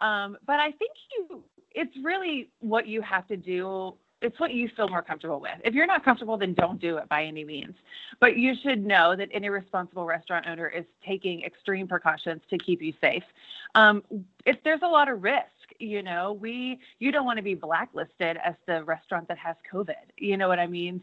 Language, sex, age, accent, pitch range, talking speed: English, female, 30-49, American, 165-215 Hz, 210 wpm